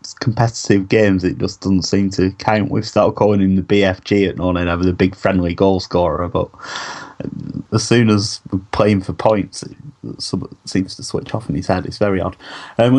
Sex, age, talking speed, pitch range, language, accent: male, 20-39, 195 wpm, 95-110 Hz, English, British